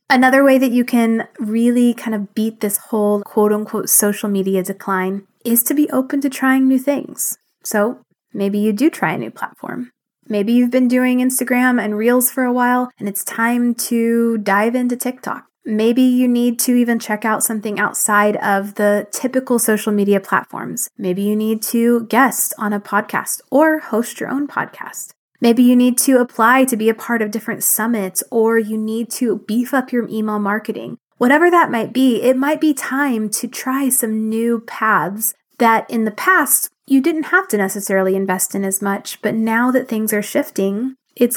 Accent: American